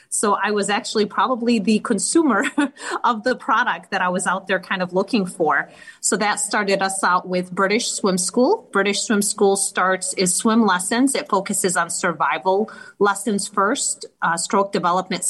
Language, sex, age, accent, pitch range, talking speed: English, female, 30-49, American, 180-215 Hz, 175 wpm